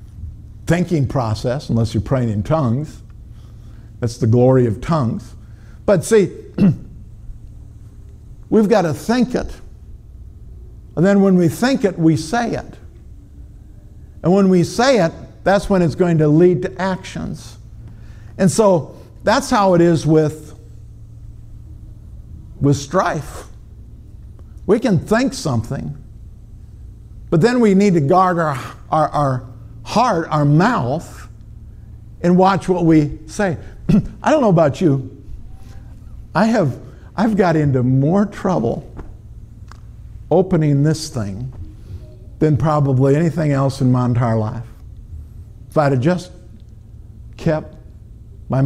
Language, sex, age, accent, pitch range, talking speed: English, male, 60-79, American, 110-165 Hz, 125 wpm